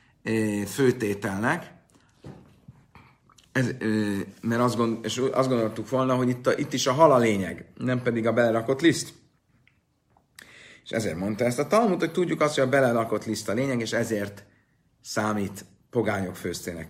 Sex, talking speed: male, 150 wpm